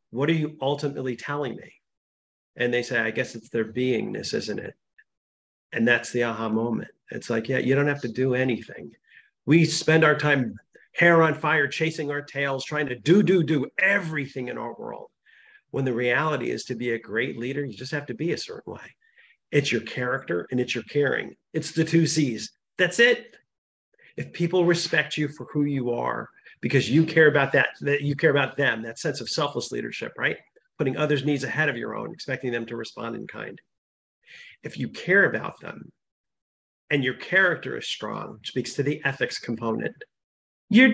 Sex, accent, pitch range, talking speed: male, American, 125-170 Hz, 195 wpm